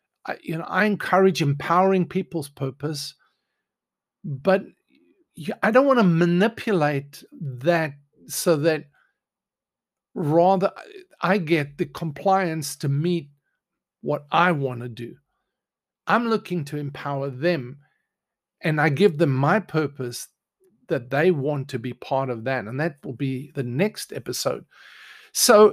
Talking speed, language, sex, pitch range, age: 130 wpm, English, male, 140-195 Hz, 50-69